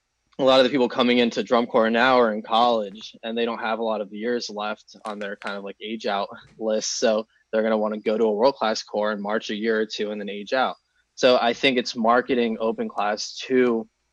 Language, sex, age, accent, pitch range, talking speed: English, male, 20-39, American, 110-120 Hz, 255 wpm